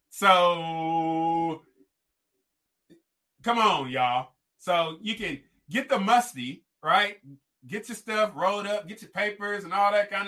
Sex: male